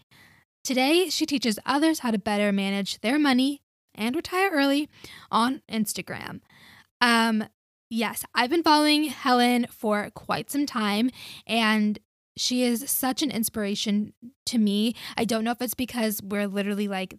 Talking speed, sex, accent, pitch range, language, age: 145 wpm, female, American, 205-250 Hz, English, 10-29